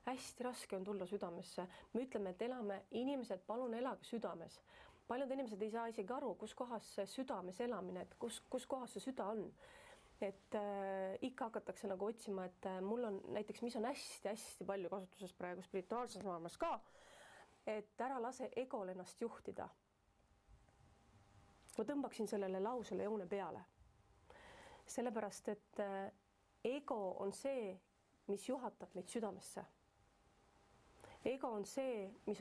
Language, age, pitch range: English, 30-49, 195-250 Hz